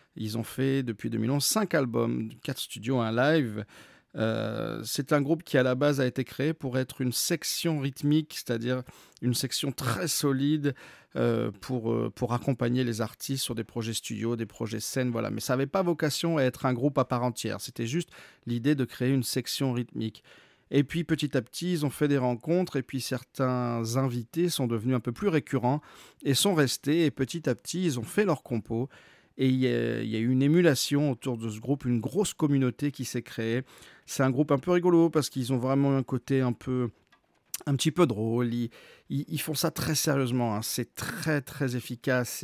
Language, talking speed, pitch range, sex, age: French, 205 wpm, 120-145 Hz, male, 40-59